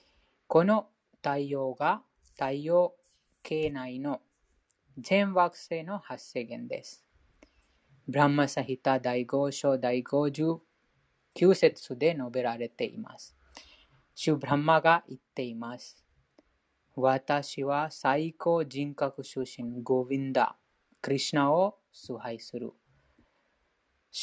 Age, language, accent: 20-39, Japanese, Indian